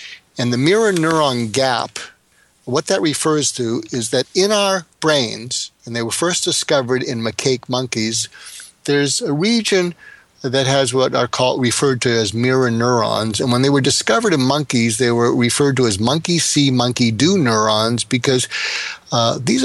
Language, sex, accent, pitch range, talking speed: English, male, American, 120-150 Hz, 160 wpm